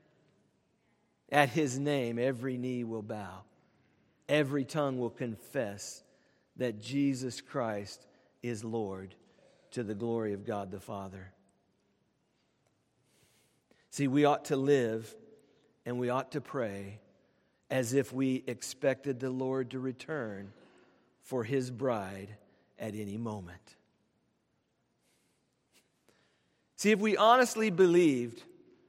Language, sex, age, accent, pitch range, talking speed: English, male, 50-69, American, 115-190 Hz, 110 wpm